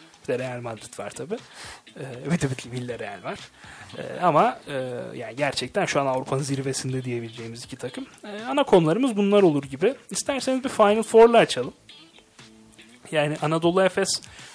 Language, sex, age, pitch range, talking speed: Turkish, male, 30-49, 140-175 Hz, 155 wpm